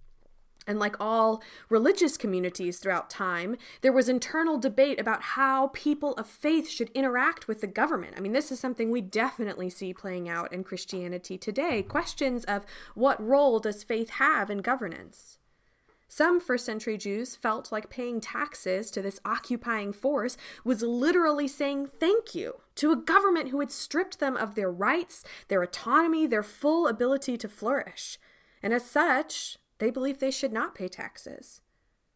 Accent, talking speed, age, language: American, 160 wpm, 20-39, English